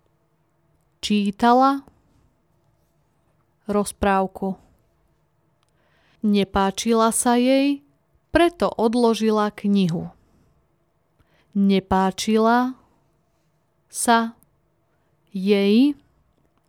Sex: female